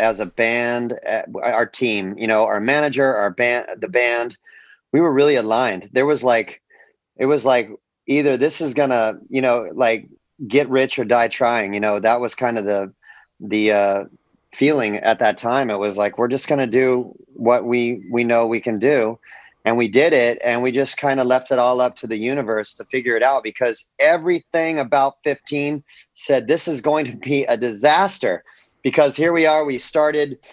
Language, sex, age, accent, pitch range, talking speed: English, male, 30-49, American, 115-135 Hz, 200 wpm